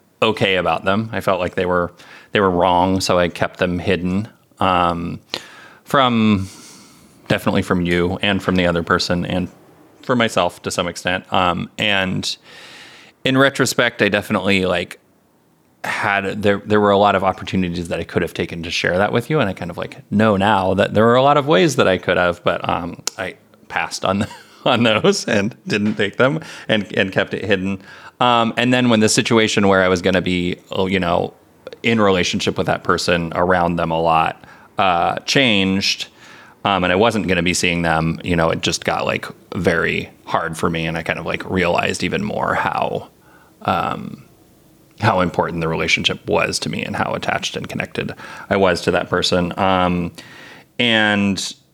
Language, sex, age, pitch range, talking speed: English, male, 30-49, 90-105 Hz, 190 wpm